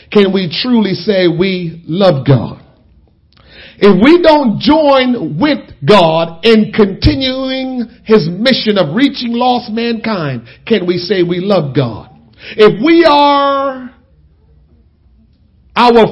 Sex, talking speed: male, 115 wpm